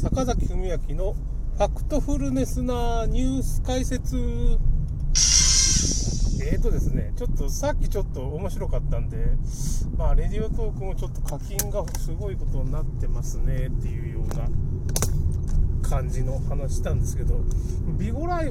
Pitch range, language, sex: 75-95 Hz, Japanese, male